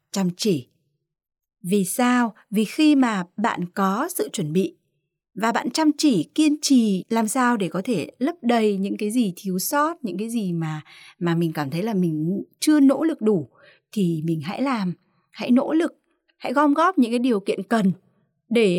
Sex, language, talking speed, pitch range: female, Vietnamese, 190 wpm, 180-260 Hz